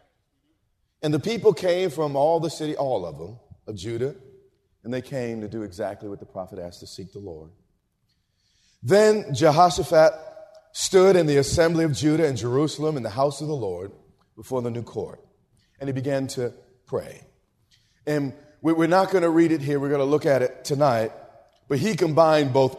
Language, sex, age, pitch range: English, male, 40-59, 120-155 Hz